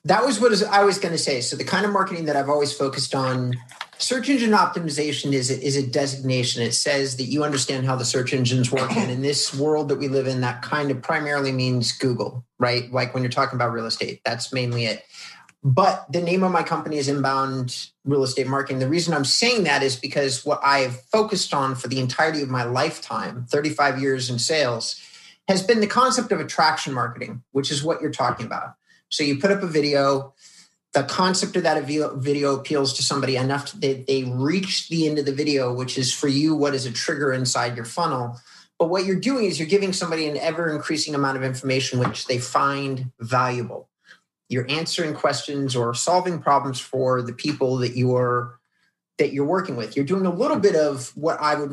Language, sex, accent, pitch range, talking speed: English, male, American, 130-155 Hz, 210 wpm